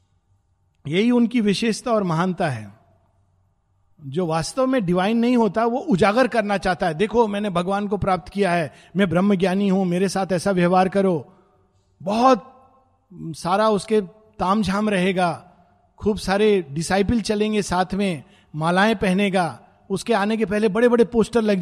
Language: Hindi